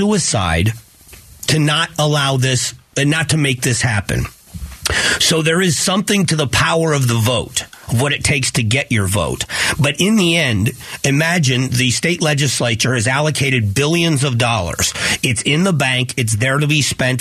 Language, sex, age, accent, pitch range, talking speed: English, male, 40-59, American, 120-150 Hz, 175 wpm